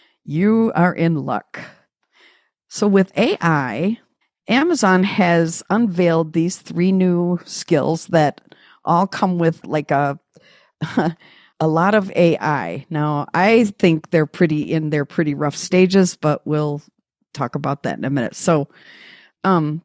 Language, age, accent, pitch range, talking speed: English, 50-69, American, 155-185 Hz, 135 wpm